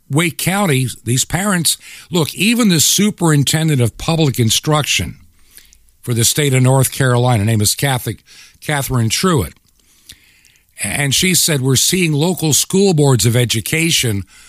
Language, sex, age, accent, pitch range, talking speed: English, male, 50-69, American, 105-155 Hz, 135 wpm